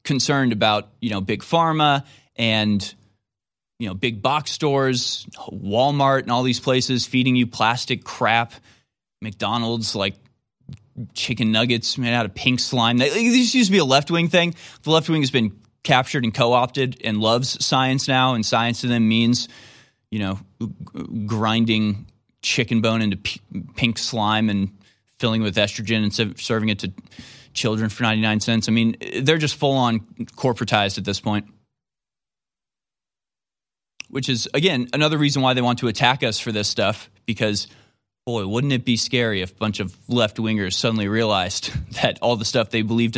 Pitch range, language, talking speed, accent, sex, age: 110-130 Hz, English, 160 wpm, American, male, 20-39